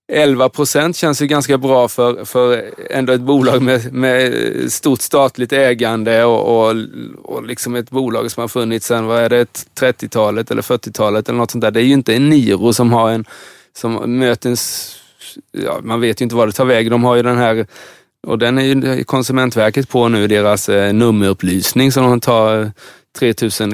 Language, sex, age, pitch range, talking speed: Swedish, male, 20-39, 105-125 Hz, 190 wpm